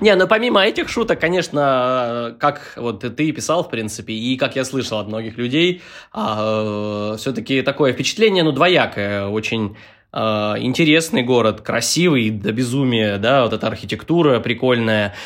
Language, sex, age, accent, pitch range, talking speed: Russian, male, 20-39, native, 110-140 Hz, 155 wpm